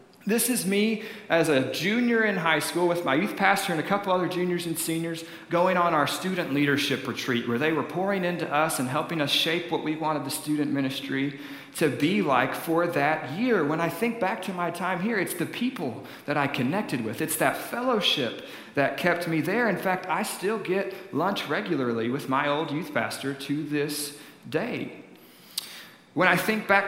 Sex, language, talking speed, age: male, English, 200 wpm, 40-59